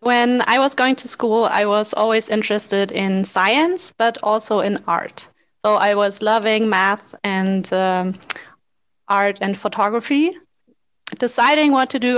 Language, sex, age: English, female, 20-39